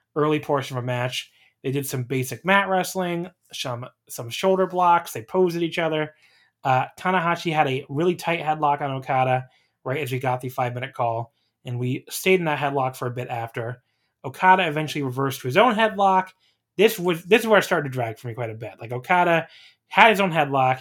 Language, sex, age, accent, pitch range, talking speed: English, male, 20-39, American, 125-165 Hz, 210 wpm